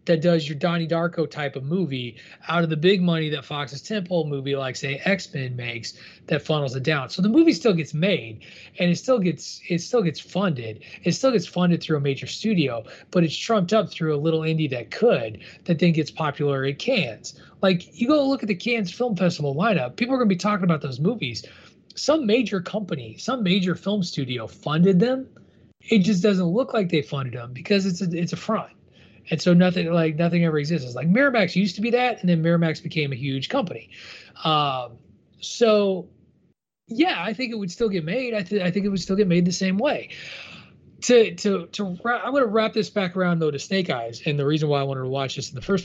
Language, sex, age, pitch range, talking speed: English, male, 30-49, 145-195 Hz, 230 wpm